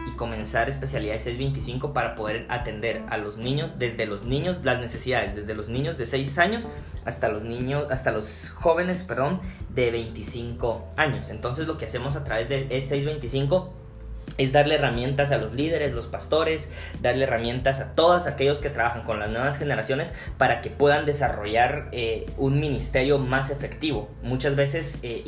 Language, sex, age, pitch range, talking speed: Spanish, male, 20-39, 110-140 Hz, 165 wpm